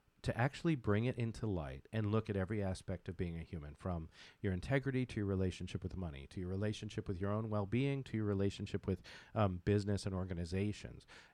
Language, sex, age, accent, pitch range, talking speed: English, male, 40-59, American, 90-115 Hz, 200 wpm